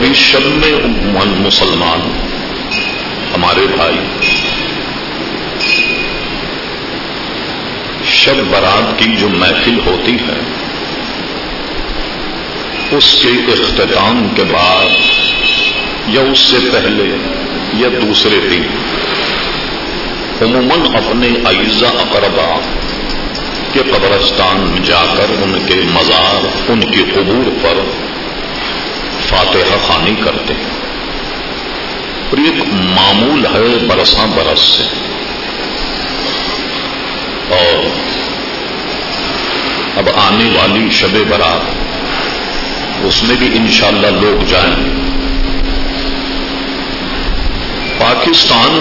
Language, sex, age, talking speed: English, male, 50-69, 75 wpm